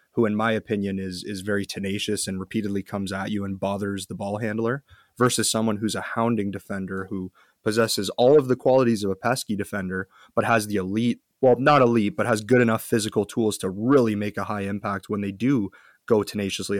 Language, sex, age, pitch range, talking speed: English, male, 30-49, 100-115 Hz, 205 wpm